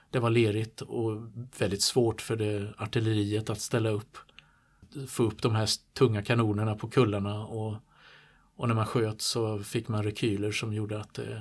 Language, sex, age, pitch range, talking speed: Swedish, male, 50-69, 105-120 Hz, 175 wpm